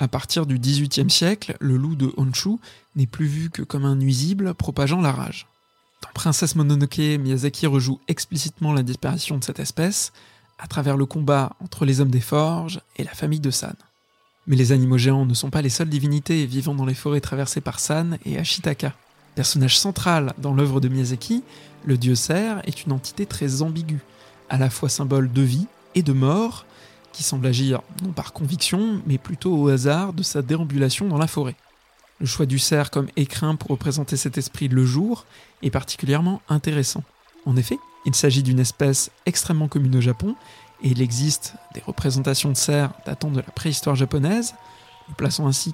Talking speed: 190 wpm